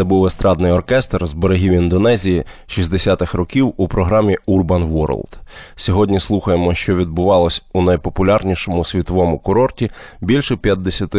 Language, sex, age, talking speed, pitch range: Ukrainian, male, 20-39, 125 wpm, 85-100 Hz